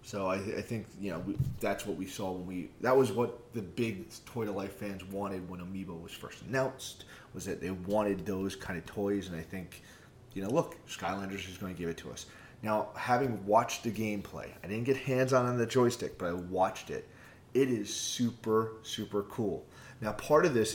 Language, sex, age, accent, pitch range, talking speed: English, male, 30-49, American, 95-120 Hz, 215 wpm